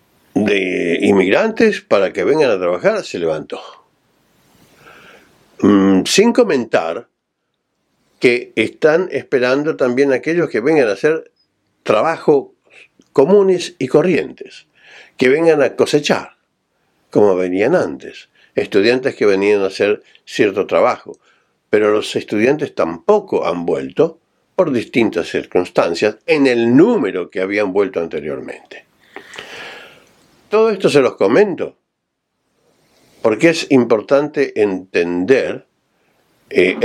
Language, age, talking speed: Spanish, 60-79, 105 wpm